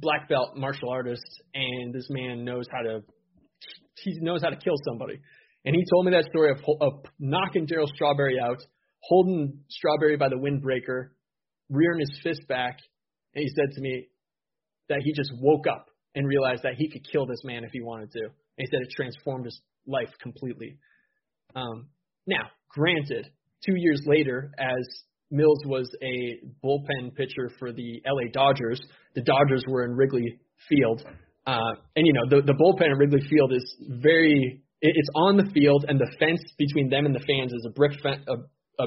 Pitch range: 125-150 Hz